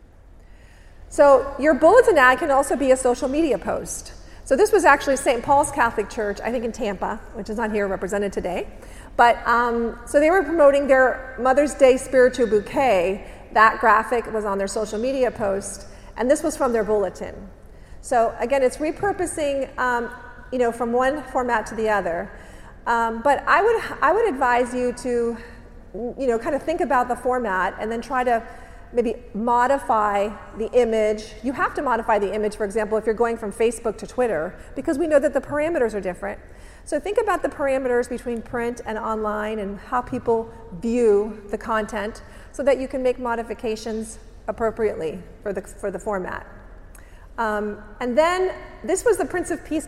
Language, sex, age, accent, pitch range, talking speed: English, female, 40-59, American, 215-275 Hz, 180 wpm